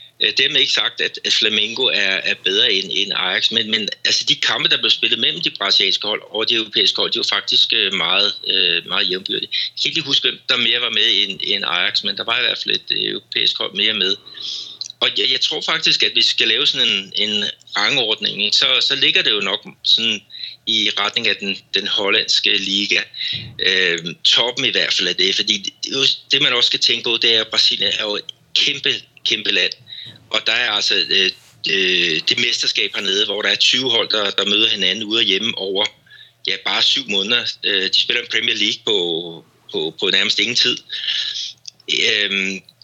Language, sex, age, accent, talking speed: Danish, male, 60-79, native, 200 wpm